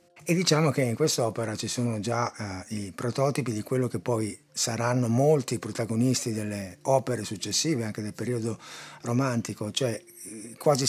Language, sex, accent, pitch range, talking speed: Italian, male, native, 100-125 Hz, 160 wpm